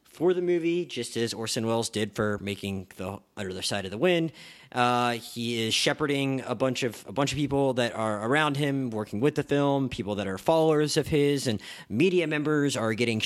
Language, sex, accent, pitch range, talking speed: English, male, American, 110-145 Hz, 215 wpm